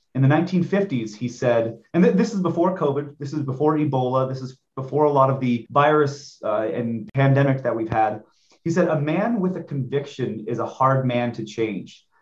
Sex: male